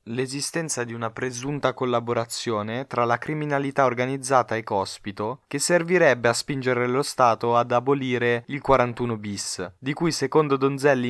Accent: native